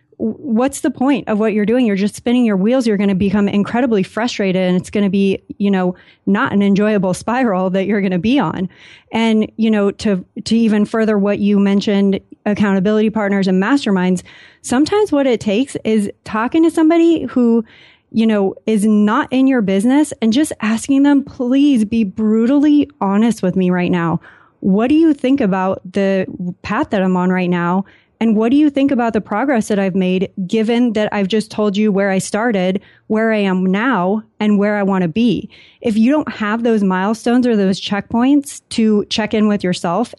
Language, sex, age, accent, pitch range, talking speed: English, female, 30-49, American, 190-235 Hz, 200 wpm